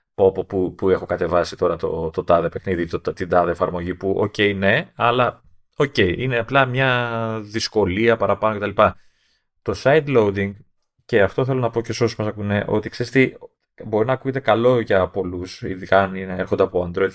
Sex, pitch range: male, 90-120 Hz